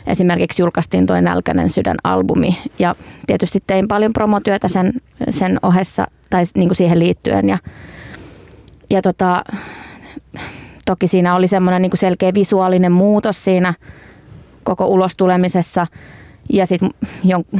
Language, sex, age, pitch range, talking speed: Finnish, female, 20-39, 180-205 Hz, 125 wpm